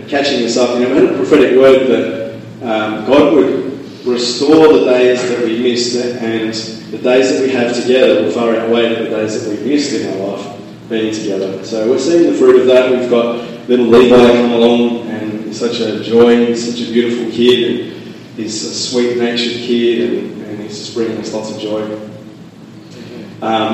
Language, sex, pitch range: English, male, 110-120 Hz